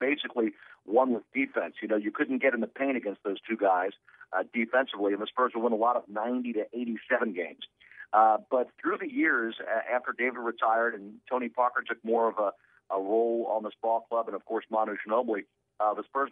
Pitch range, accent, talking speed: 110-125 Hz, American, 220 wpm